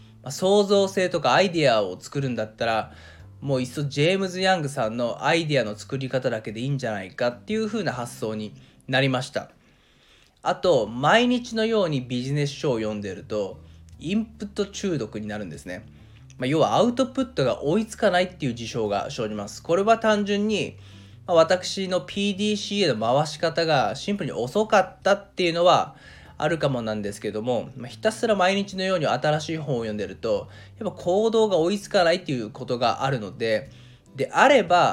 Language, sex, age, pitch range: Japanese, male, 20-39, 115-185 Hz